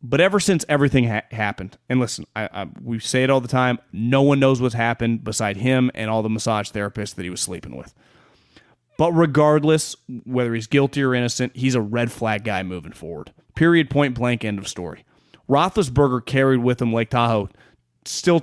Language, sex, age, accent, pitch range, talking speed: English, male, 30-49, American, 115-150 Hz, 185 wpm